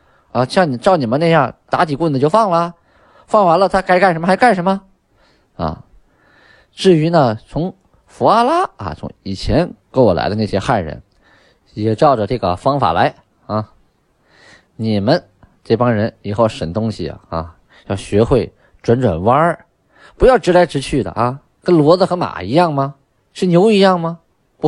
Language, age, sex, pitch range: Chinese, 20-39, male, 100-170 Hz